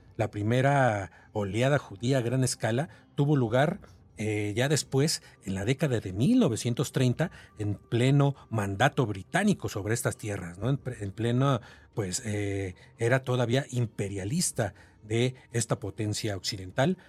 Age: 40-59